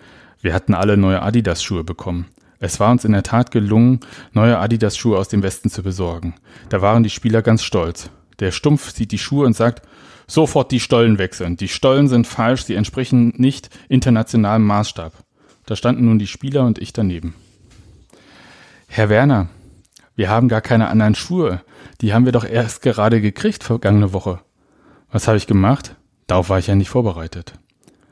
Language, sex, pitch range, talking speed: German, male, 100-125 Hz, 175 wpm